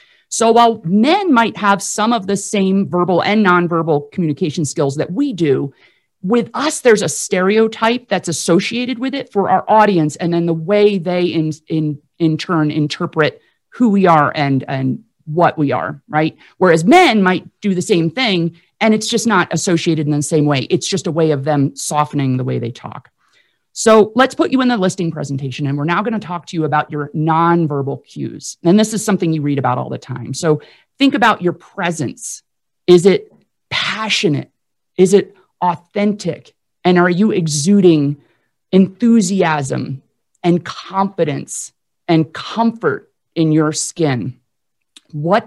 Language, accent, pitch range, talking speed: English, American, 155-205 Hz, 170 wpm